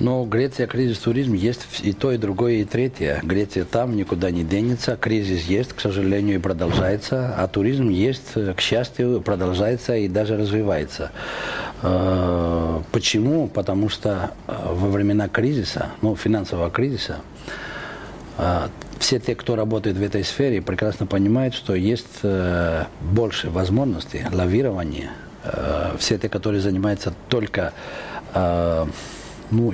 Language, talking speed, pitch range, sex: Russian, 120 wpm, 90-115 Hz, male